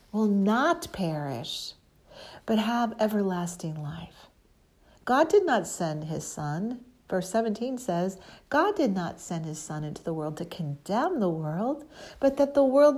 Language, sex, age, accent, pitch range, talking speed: English, female, 60-79, American, 165-225 Hz, 155 wpm